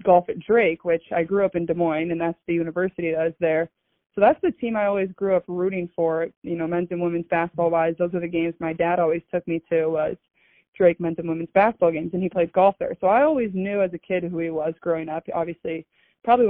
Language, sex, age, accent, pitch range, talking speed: English, female, 20-39, American, 170-185 Hz, 255 wpm